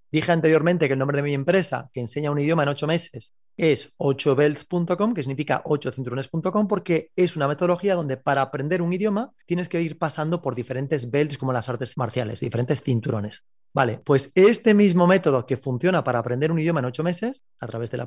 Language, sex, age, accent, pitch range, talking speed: Spanish, male, 30-49, Spanish, 130-175 Hz, 200 wpm